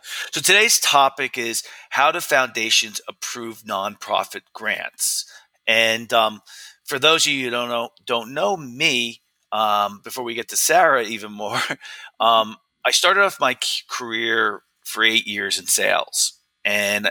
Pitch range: 110-130 Hz